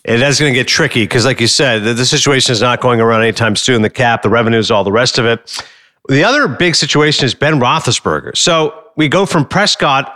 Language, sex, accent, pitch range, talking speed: English, male, American, 125-160 Hz, 235 wpm